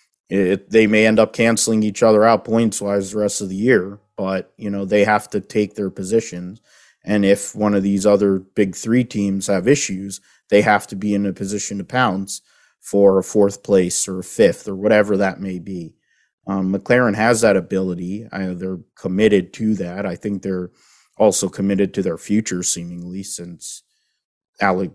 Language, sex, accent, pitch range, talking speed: English, male, American, 95-105 Hz, 185 wpm